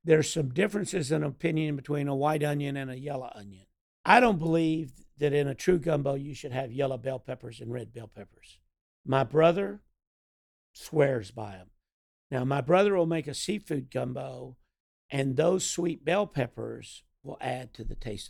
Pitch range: 125-160 Hz